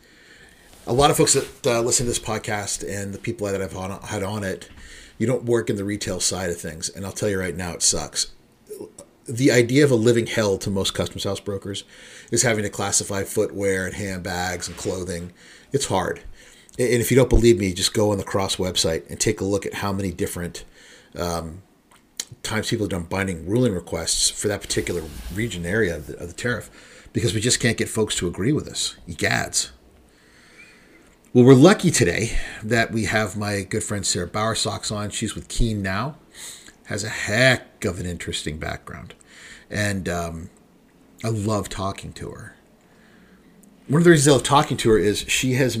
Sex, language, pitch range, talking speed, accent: male, English, 90-115 Hz, 200 wpm, American